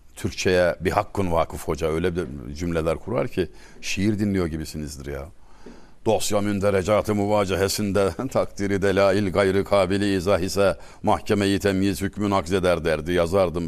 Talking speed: 125 wpm